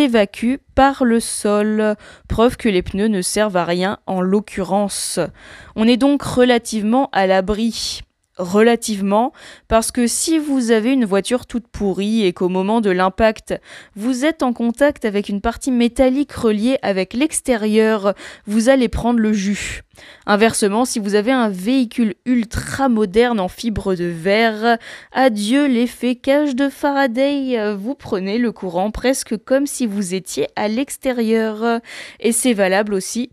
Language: French